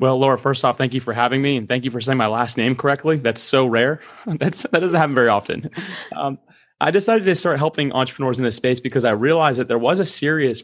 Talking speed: 255 wpm